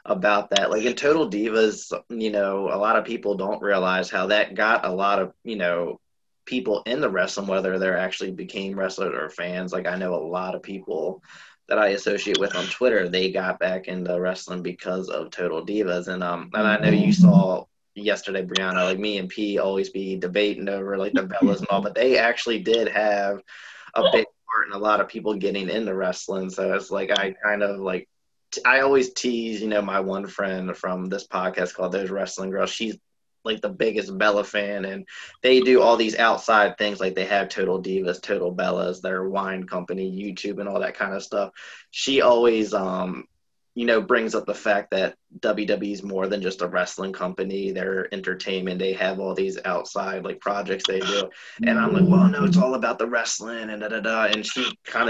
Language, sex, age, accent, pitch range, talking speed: English, male, 20-39, American, 95-110 Hz, 210 wpm